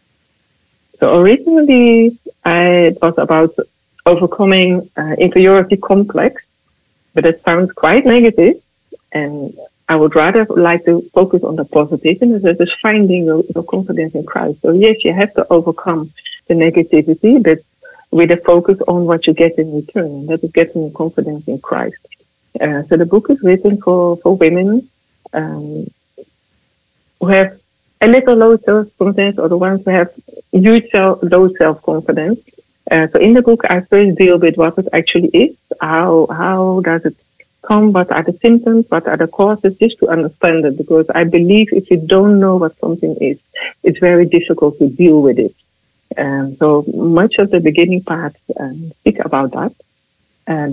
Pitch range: 160-210 Hz